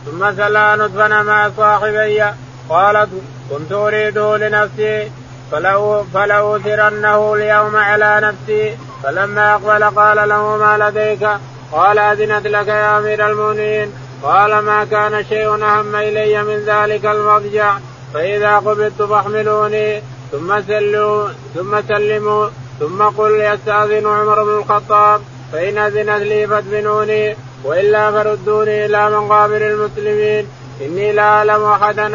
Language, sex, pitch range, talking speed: Arabic, male, 205-210 Hz, 115 wpm